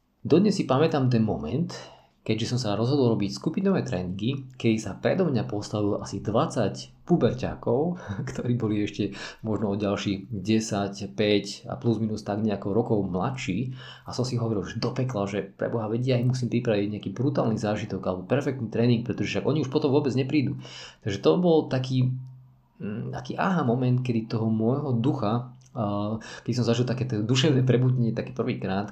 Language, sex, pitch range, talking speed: Slovak, male, 100-125 Hz, 165 wpm